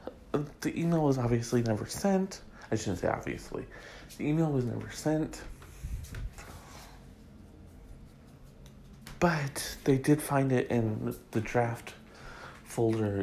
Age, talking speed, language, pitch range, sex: 40-59, 110 wpm, English, 95-125 Hz, male